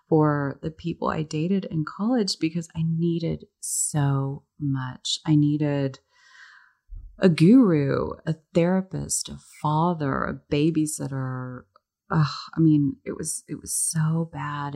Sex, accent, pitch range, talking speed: female, American, 130-170 Hz, 120 wpm